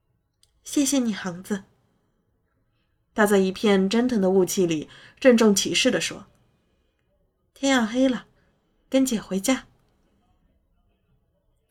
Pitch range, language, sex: 185-245 Hz, Chinese, female